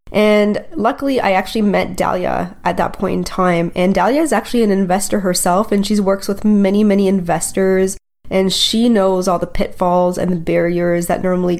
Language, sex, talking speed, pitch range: English, female, 185 wpm, 180-205 Hz